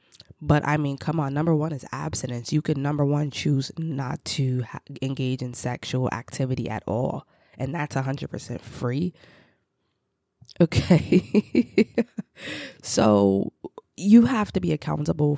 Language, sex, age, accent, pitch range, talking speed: English, female, 20-39, American, 140-165 Hz, 135 wpm